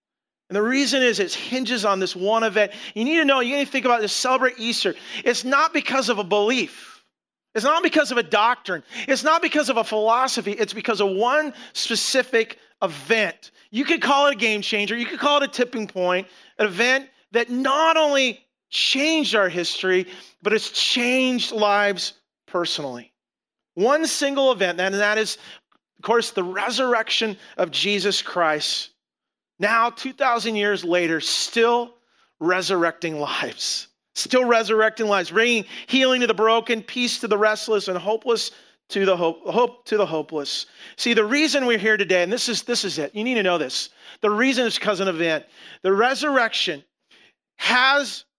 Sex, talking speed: male, 175 wpm